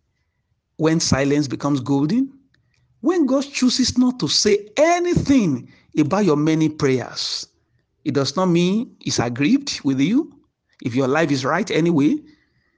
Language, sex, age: English, male, 50-69